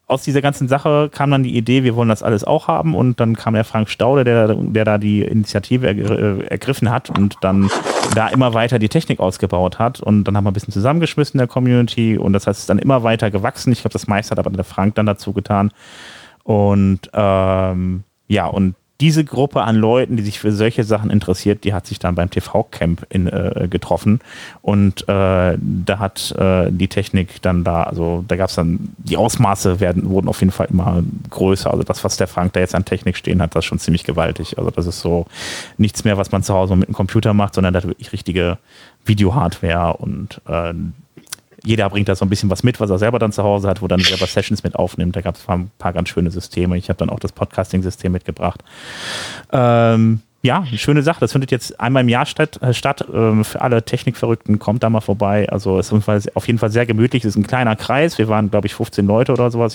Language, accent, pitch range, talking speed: German, German, 95-115 Hz, 230 wpm